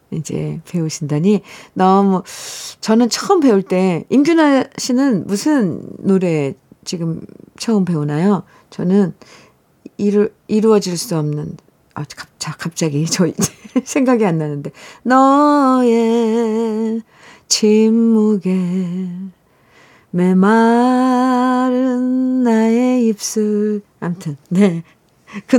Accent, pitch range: native, 180-260 Hz